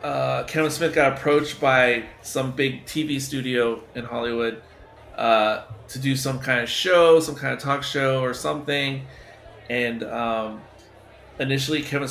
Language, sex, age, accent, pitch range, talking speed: English, male, 30-49, American, 120-140 Hz, 150 wpm